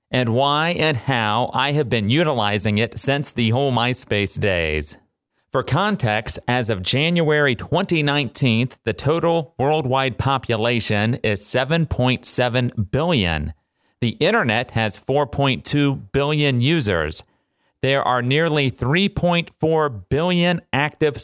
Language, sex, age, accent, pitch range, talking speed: English, male, 30-49, American, 110-145 Hz, 110 wpm